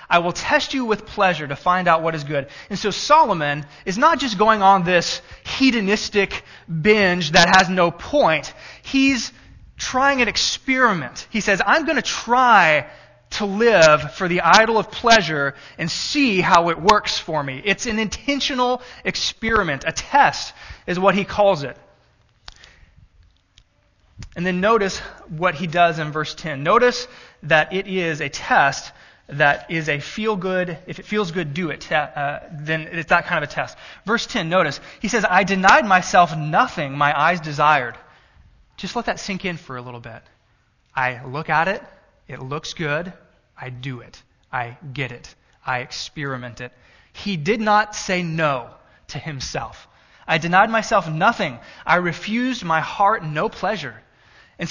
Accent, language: American, English